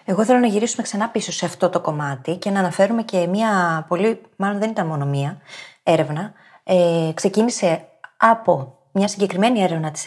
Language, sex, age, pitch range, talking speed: Greek, female, 20-39, 165-210 Hz, 175 wpm